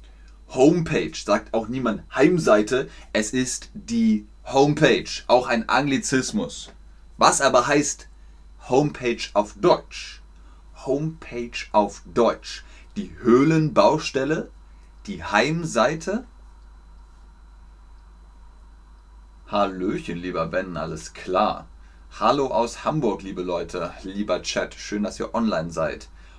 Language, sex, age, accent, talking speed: German, male, 30-49, German, 95 wpm